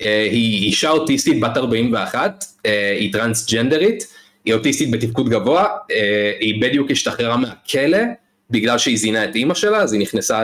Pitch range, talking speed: 105-145 Hz, 140 wpm